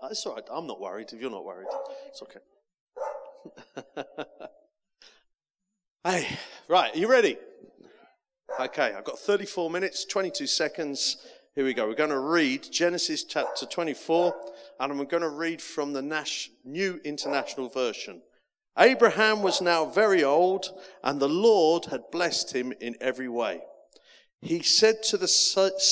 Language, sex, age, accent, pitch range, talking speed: English, male, 40-59, British, 145-220 Hz, 150 wpm